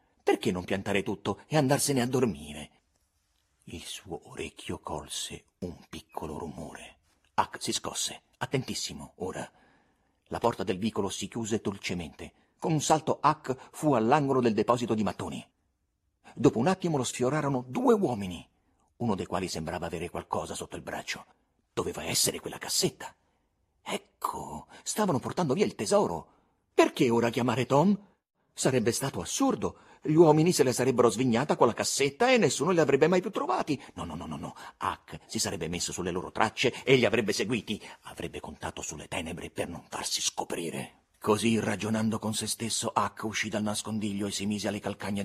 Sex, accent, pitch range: male, native, 95-130 Hz